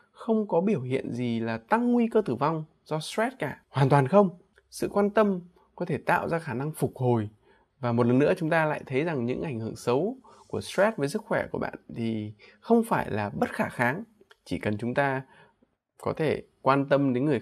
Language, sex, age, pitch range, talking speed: Vietnamese, male, 20-39, 125-205 Hz, 225 wpm